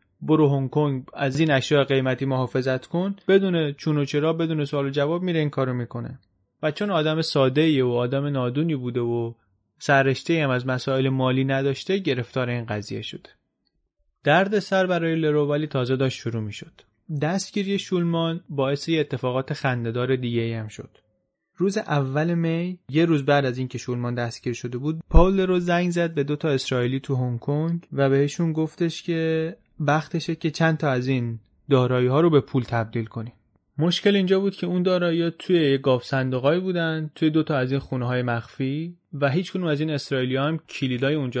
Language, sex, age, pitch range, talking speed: Persian, male, 30-49, 125-165 Hz, 175 wpm